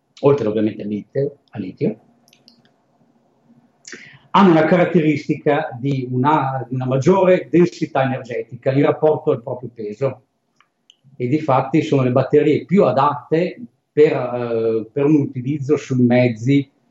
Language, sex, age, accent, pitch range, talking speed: Italian, male, 50-69, native, 120-155 Hz, 120 wpm